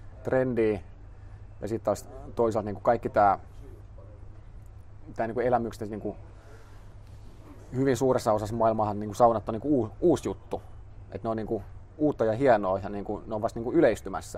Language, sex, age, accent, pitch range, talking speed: Finnish, male, 30-49, native, 100-115 Hz, 155 wpm